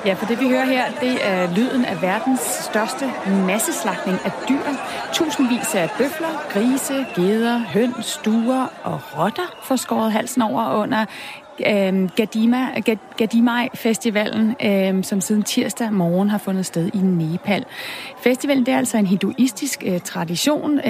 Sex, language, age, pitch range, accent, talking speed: female, Danish, 30-49, 200-245 Hz, native, 140 wpm